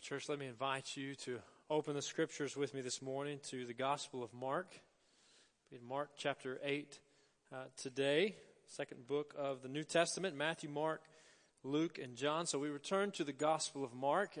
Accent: American